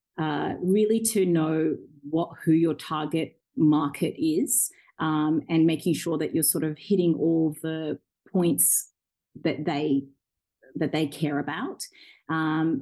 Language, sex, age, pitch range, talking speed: English, female, 30-49, 150-175 Hz, 140 wpm